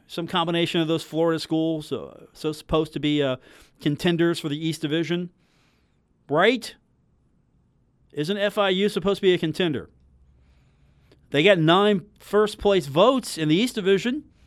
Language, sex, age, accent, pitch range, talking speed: English, male, 40-59, American, 150-195 Hz, 145 wpm